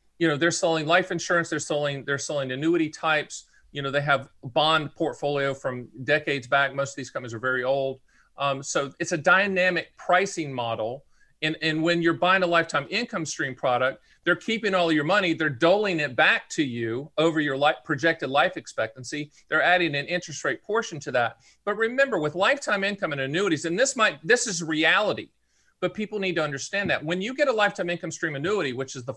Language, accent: English, American